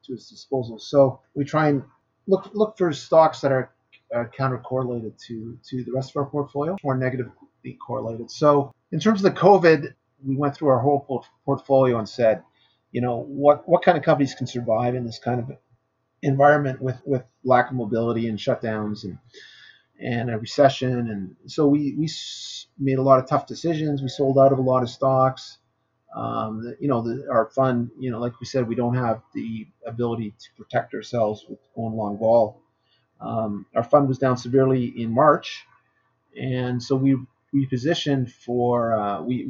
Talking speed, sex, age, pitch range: 185 wpm, male, 30-49, 120-140 Hz